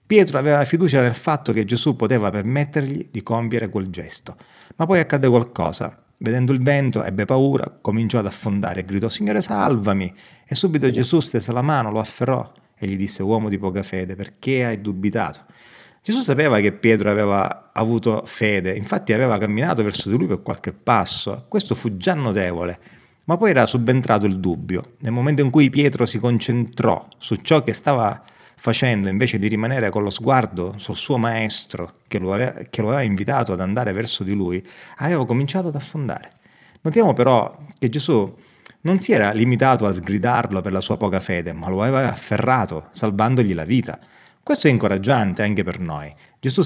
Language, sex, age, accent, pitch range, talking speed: Italian, male, 30-49, native, 100-130 Hz, 180 wpm